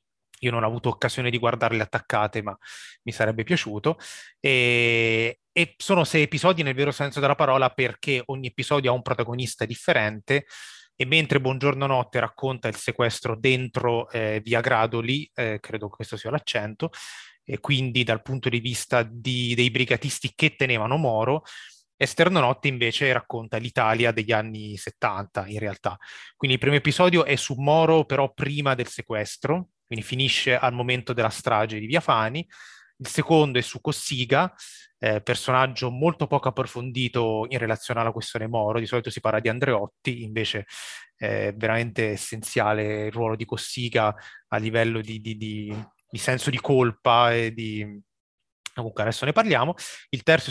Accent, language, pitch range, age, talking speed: native, Italian, 115-140 Hz, 20-39, 160 wpm